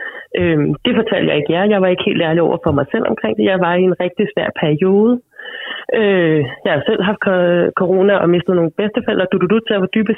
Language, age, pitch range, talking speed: Danish, 30-49, 170-220 Hz, 225 wpm